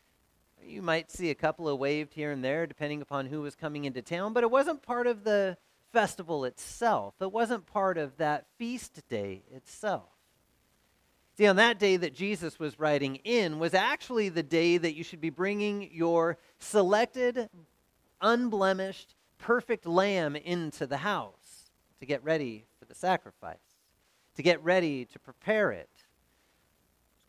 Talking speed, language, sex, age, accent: 160 wpm, English, male, 30-49, American